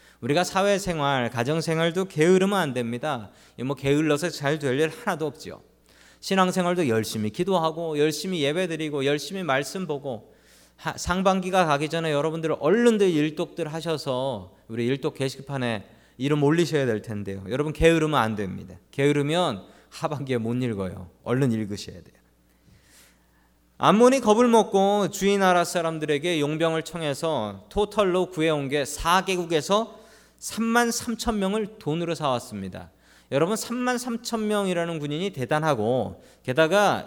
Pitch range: 125-190 Hz